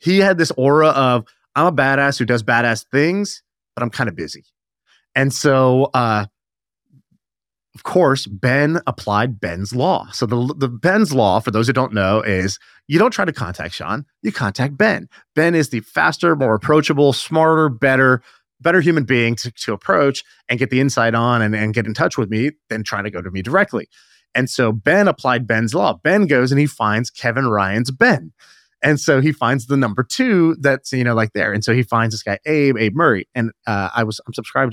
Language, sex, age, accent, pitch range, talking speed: English, male, 30-49, American, 110-145 Hz, 205 wpm